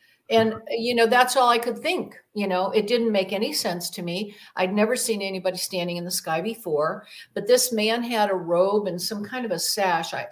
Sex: female